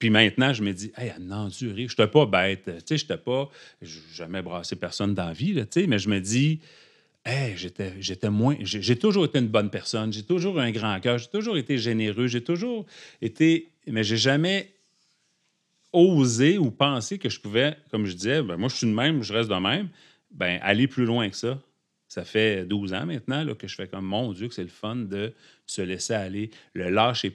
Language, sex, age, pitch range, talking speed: French, male, 40-59, 105-160 Hz, 215 wpm